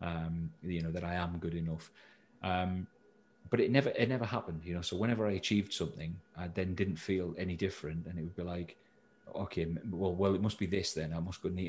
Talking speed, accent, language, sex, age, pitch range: 230 wpm, British, English, male, 30-49, 85-95 Hz